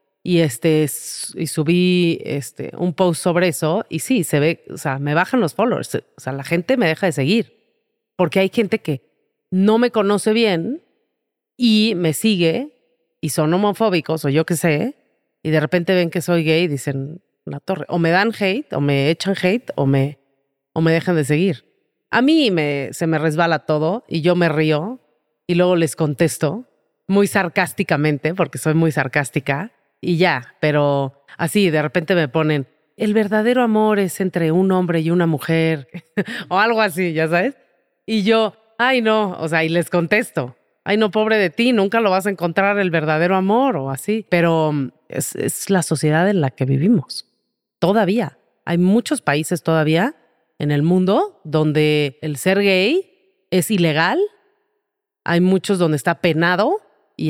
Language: Spanish